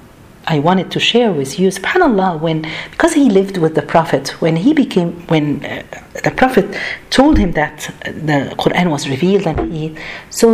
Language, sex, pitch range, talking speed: Arabic, female, 190-260 Hz, 175 wpm